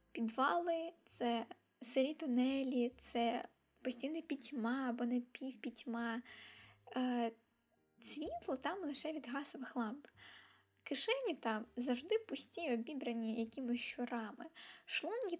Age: 10-29